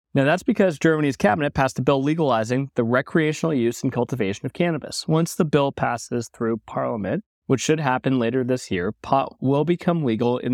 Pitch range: 115-145 Hz